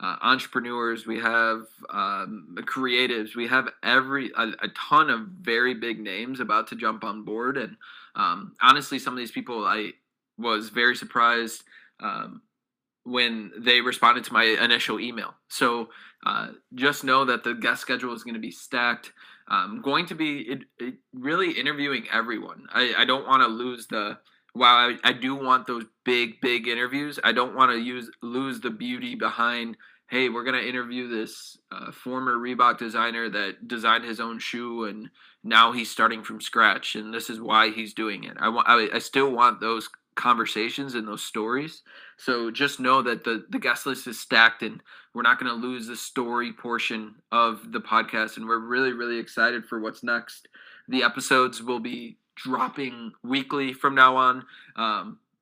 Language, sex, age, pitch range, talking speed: English, male, 20-39, 115-130 Hz, 175 wpm